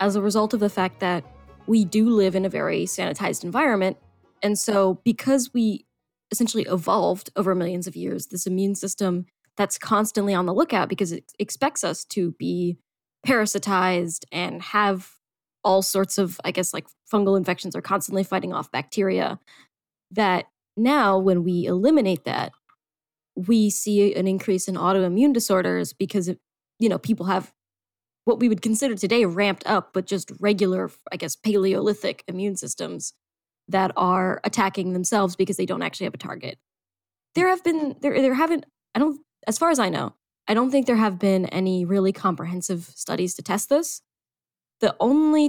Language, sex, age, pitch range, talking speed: English, female, 10-29, 185-225 Hz, 170 wpm